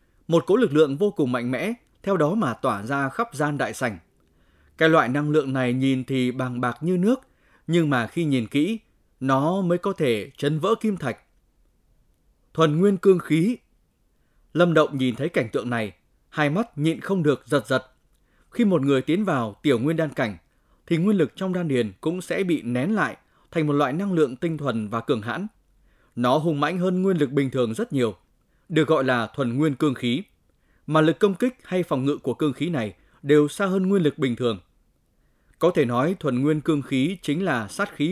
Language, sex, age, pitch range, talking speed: Vietnamese, male, 20-39, 125-170 Hz, 215 wpm